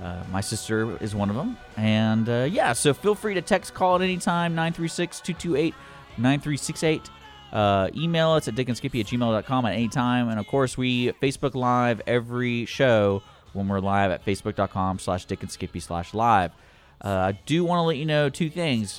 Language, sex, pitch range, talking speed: English, male, 100-145 Hz, 185 wpm